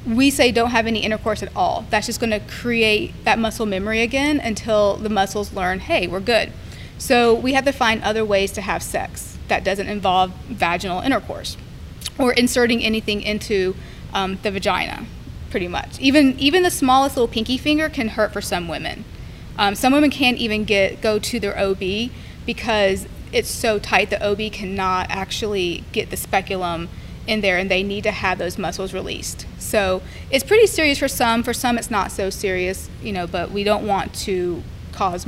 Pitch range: 195-245 Hz